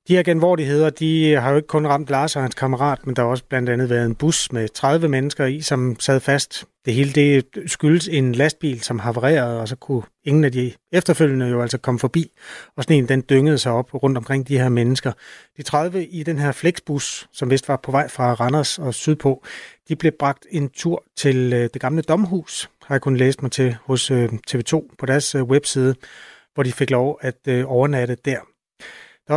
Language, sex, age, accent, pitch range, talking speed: Danish, male, 30-49, native, 130-155 Hz, 210 wpm